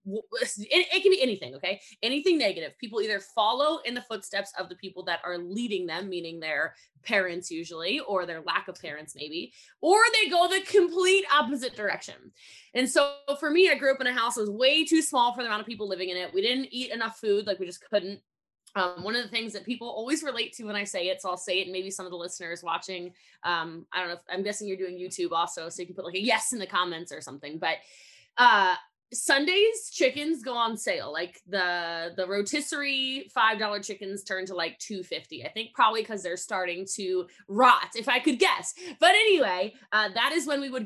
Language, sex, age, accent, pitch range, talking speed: English, female, 20-39, American, 175-255 Hz, 230 wpm